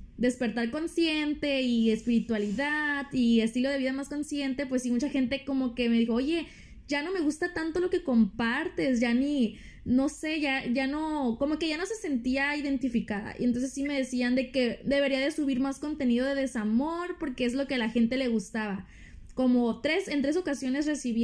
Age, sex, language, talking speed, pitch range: 20-39, female, Spanish, 200 wpm, 245-295 Hz